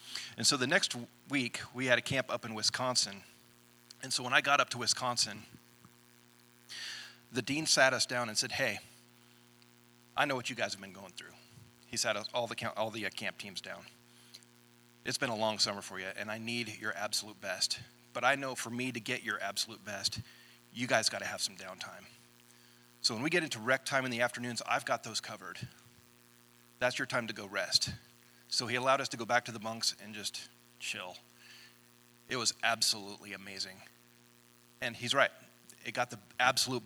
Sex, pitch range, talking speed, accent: male, 100-120 Hz, 200 wpm, American